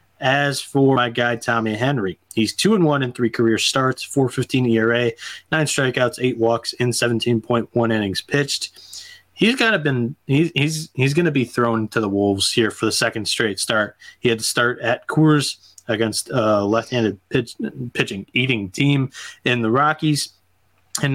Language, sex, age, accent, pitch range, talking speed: English, male, 20-39, American, 115-135 Hz, 180 wpm